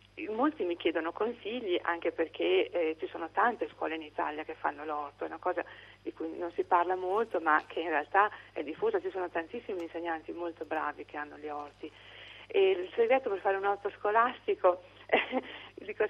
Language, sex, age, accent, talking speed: Italian, female, 40-59, native, 190 wpm